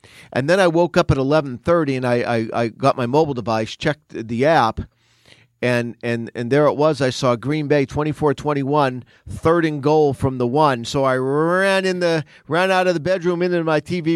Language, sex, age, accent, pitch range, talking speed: English, male, 40-59, American, 120-155 Hz, 205 wpm